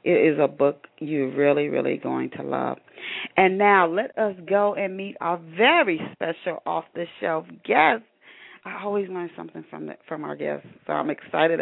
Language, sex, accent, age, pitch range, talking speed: English, female, American, 40-59, 170-225 Hz, 175 wpm